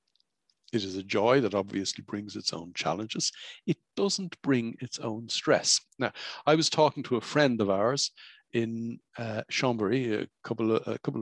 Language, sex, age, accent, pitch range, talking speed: English, male, 60-79, Irish, 105-170 Hz, 160 wpm